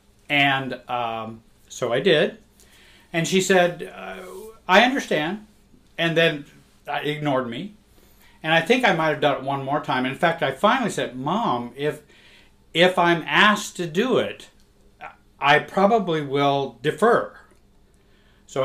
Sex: male